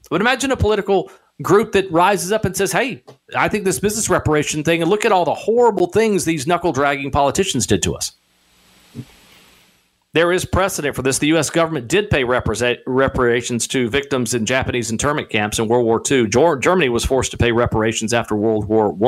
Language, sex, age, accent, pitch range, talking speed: English, male, 50-69, American, 115-165 Hz, 195 wpm